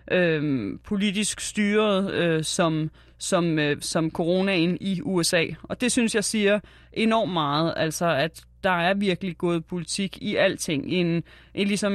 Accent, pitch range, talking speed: native, 165-195 Hz, 155 wpm